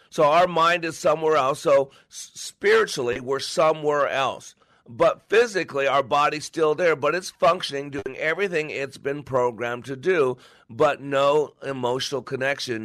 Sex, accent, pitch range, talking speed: male, American, 130-155 Hz, 145 wpm